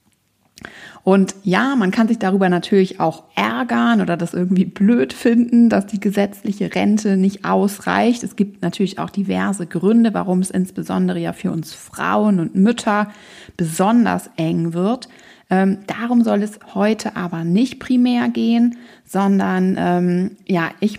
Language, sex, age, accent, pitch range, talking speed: German, female, 30-49, German, 185-225 Hz, 140 wpm